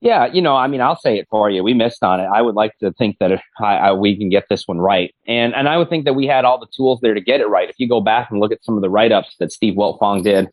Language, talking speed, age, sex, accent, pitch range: English, 350 wpm, 30-49, male, American, 95-105 Hz